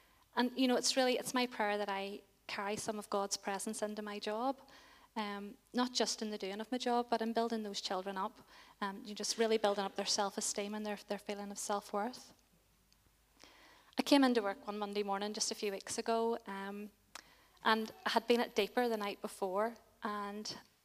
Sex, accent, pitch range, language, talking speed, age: female, British, 205-235 Hz, English, 200 wpm, 30-49